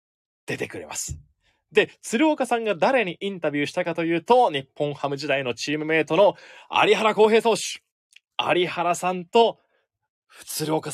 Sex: male